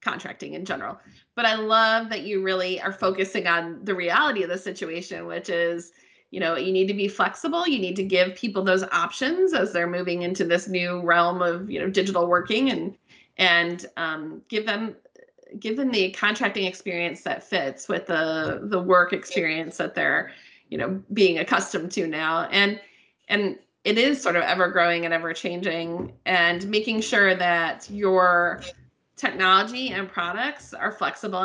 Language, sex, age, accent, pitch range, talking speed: English, female, 30-49, American, 175-205 Hz, 175 wpm